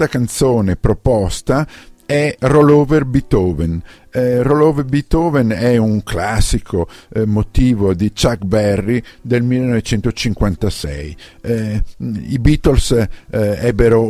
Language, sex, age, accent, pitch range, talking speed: Italian, male, 50-69, native, 100-130 Hz, 100 wpm